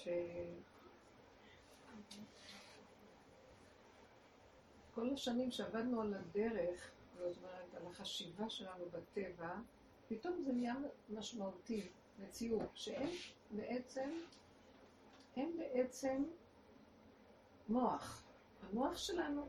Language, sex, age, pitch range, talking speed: Hebrew, female, 50-69, 185-255 Hz, 70 wpm